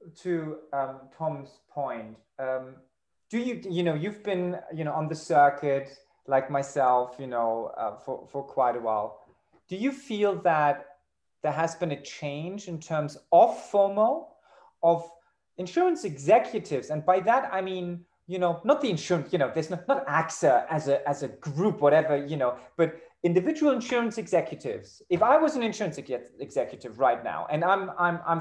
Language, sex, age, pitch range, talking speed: English, male, 30-49, 155-205 Hz, 175 wpm